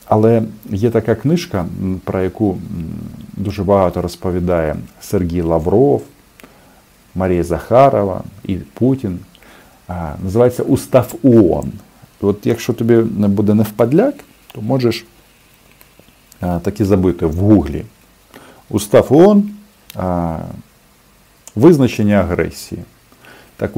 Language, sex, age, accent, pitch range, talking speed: Russian, male, 40-59, native, 90-115 Hz, 90 wpm